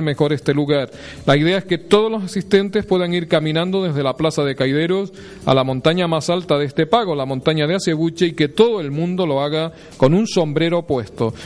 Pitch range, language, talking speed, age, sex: 140-175 Hz, Spanish, 215 wpm, 40-59, male